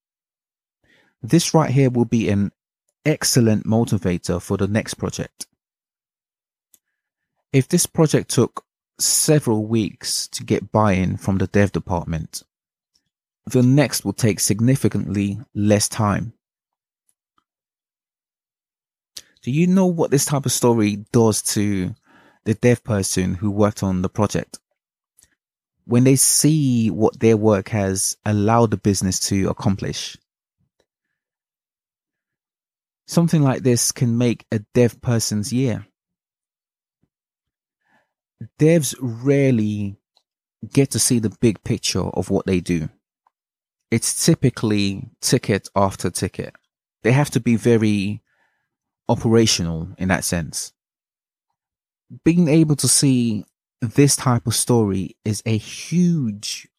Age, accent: 20-39, British